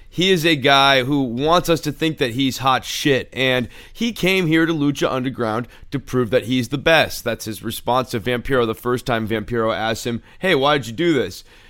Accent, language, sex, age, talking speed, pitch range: American, English, male, 30-49, 220 wpm, 115-145 Hz